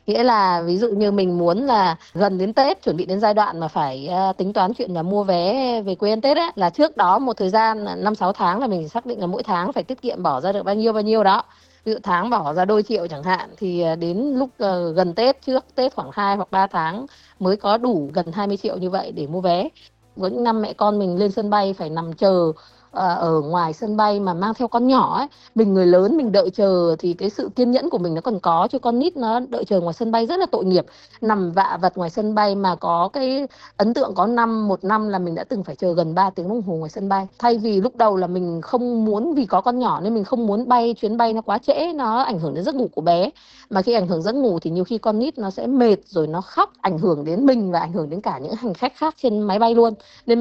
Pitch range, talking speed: 180-235 Hz, 275 wpm